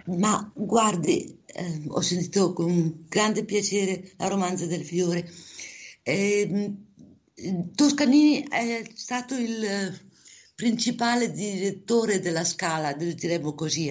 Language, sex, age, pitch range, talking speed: Italian, female, 50-69, 165-215 Hz, 100 wpm